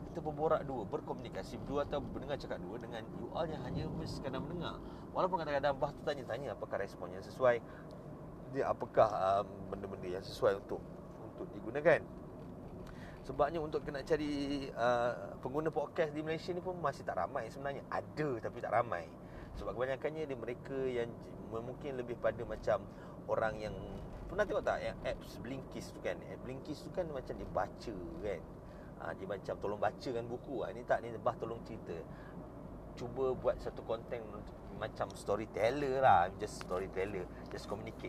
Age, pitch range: 30-49, 120-150 Hz